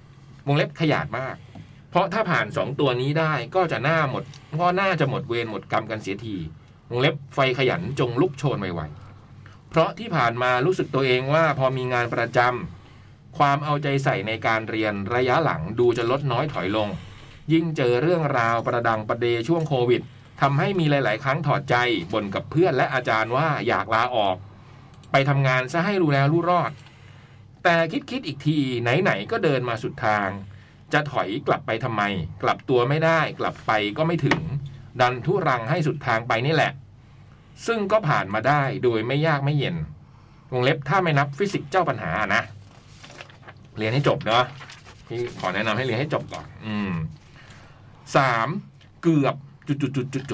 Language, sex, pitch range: Thai, male, 120-155 Hz